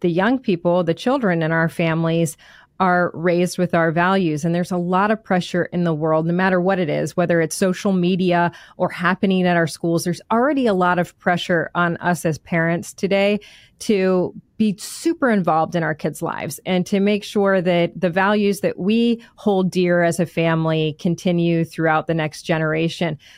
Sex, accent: female, American